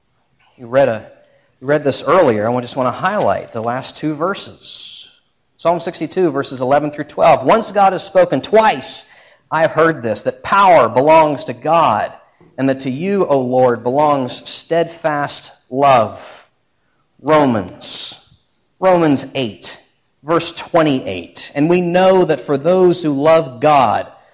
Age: 40-59